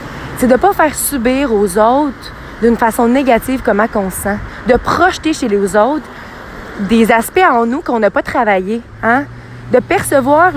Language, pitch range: French, 210-275 Hz